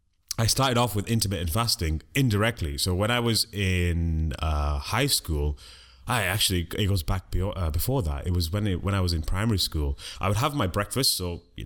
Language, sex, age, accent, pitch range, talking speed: English, male, 30-49, British, 85-115 Hz, 210 wpm